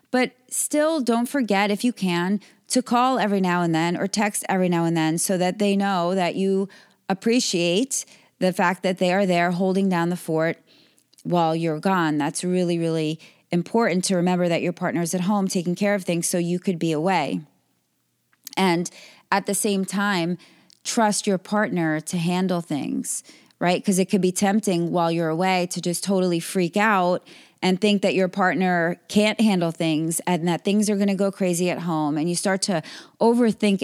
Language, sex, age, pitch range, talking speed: English, female, 30-49, 175-205 Hz, 190 wpm